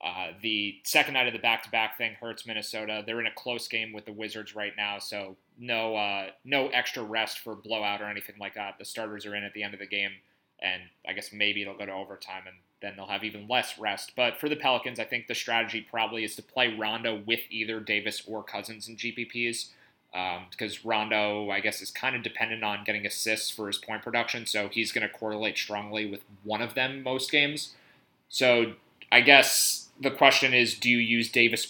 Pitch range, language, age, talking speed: 105-120 Hz, English, 30-49, 220 wpm